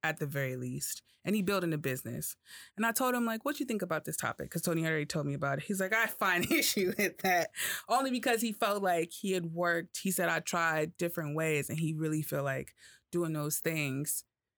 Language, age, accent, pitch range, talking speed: English, 20-39, American, 150-195 Hz, 230 wpm